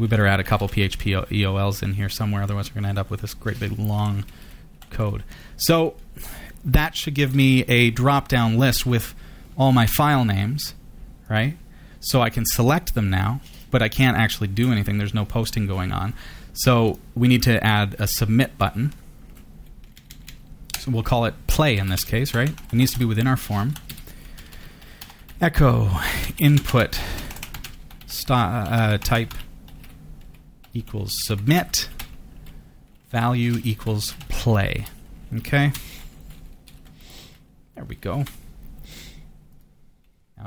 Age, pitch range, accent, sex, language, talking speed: 30-49, 100-130 Hz, American, male, English, 135 wpm